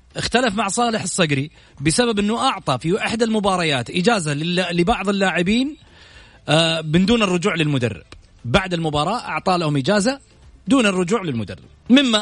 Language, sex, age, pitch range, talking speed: Arabic, male, 30-49, 135-225 Hz, 135 wpm